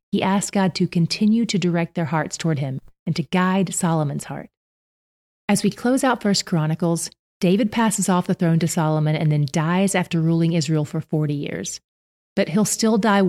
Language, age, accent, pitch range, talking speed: English, 30-49, American, 165-195 Hz, 190 wpm